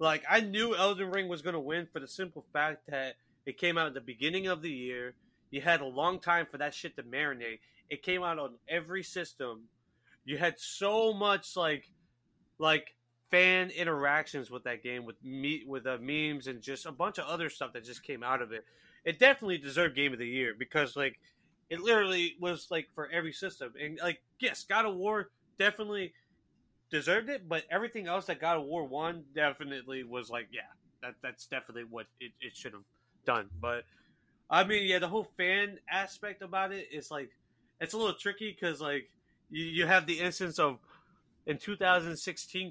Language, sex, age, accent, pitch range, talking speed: English, male, 30-49, American, 130-180 Hz, 200 wpm